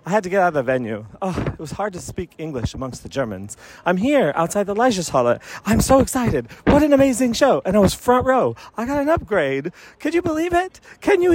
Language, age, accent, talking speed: English, 30-49, American, 240 wpm